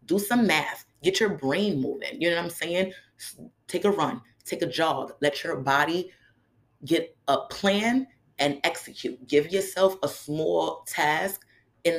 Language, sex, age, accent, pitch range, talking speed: English, female, 30-49, American, 135-170 Hz, 160 wpm